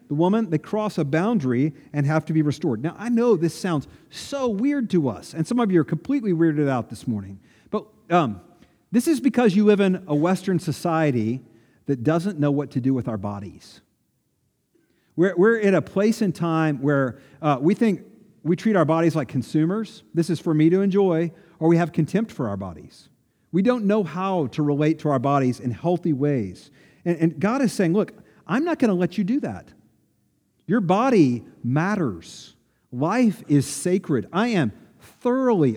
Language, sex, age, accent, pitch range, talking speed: English, male, 50-69, American, 140-205 Hz, 195 wpm